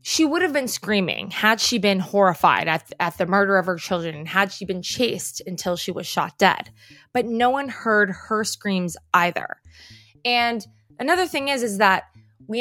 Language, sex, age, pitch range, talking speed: English, female, 20-39, 175-225 Hz, 190 wpm